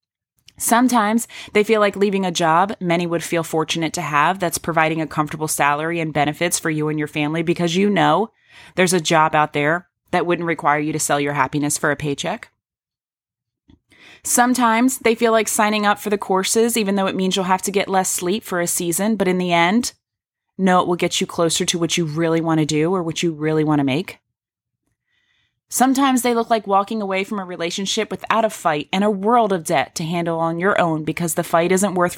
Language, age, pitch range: English, 20-39, 160-205 Hz